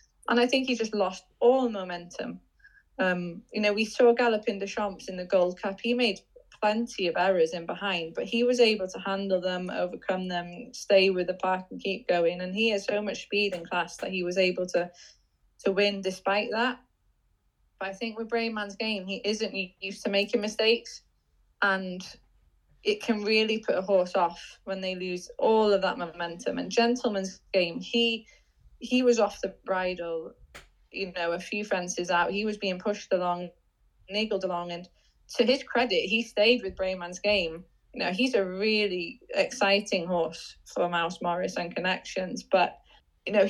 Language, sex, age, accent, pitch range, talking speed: English, female, 20-39, British, 185-220 Hz, 185 wpm